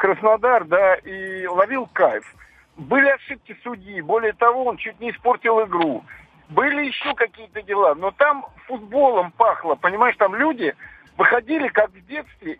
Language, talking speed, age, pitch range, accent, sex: Russian, 145 wpm, 50-69, 205-280 Hz, native, male